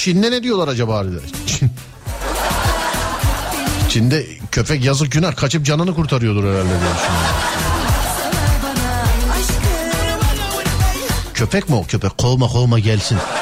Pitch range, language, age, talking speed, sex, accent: 95-140 Hz, Turkish, 50-69, 90 wpm, male, native